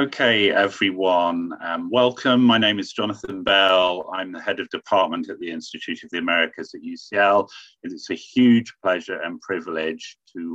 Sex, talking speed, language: male, 165 wpm, English